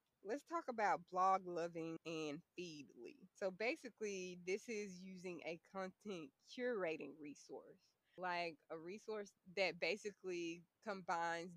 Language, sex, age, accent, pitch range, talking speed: English, female, 20-39, American, 160-195 Hz, 110 wpm